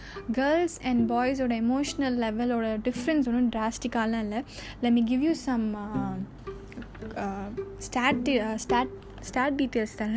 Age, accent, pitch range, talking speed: 10-29, native, 230-265 Hz, 100 wpm